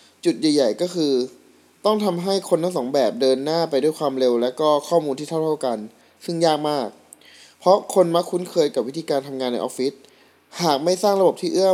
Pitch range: 130-170 Hz